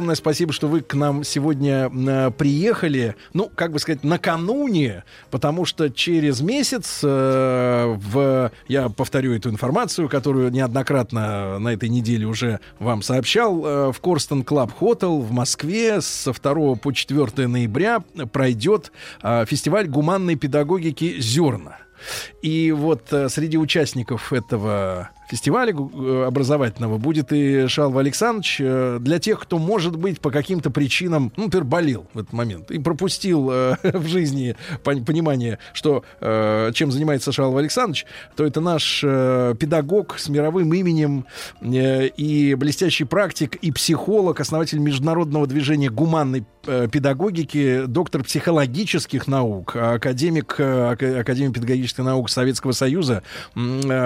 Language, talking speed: Russian, 125 wpm